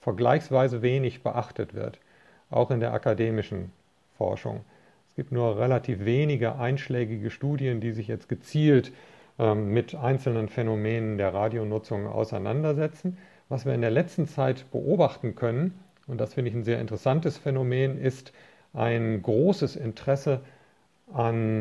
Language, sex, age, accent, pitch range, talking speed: German, male, 40-59, German, 115-145 Hz, 135 wpm